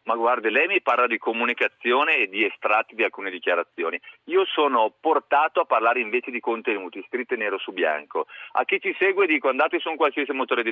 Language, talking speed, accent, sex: Italian, 200 wpm, native, male